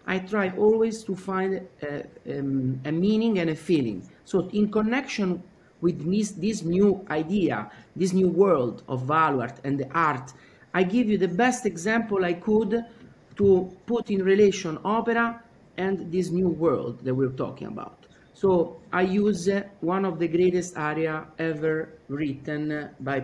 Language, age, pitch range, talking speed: English, 50-69, 155-215 Hz, 150 wpm